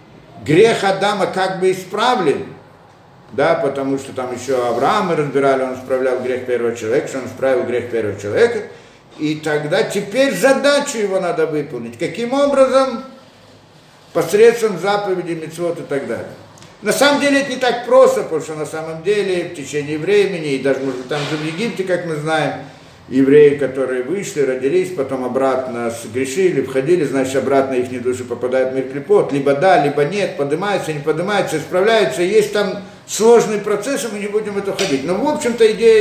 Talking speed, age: 165 wpm, 50-69